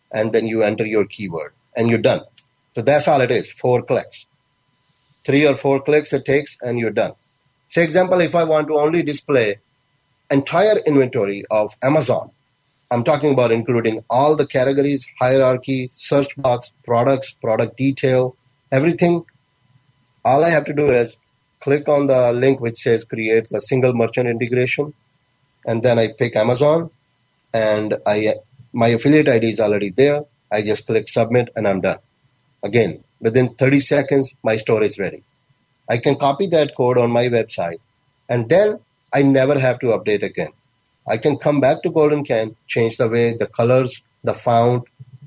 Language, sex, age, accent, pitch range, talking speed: English, male, 30-49, Indian, 115-140 Hz, 165 wpm